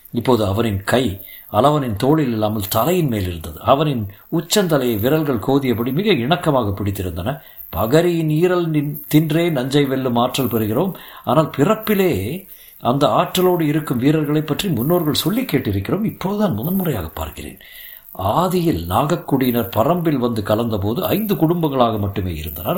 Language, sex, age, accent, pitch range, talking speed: Tamil, male, 50-69, native, 110-170 Hz, 115 wpm